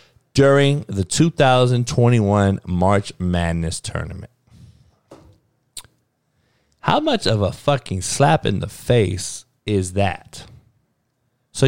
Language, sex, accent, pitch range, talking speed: English, male, American, 110-160 Hz, 90 wpm